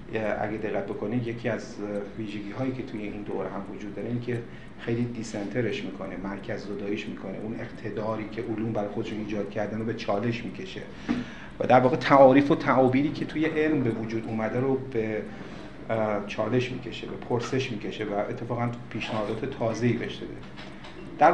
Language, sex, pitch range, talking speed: Persian, male, 110-130 Hz, 165 wpm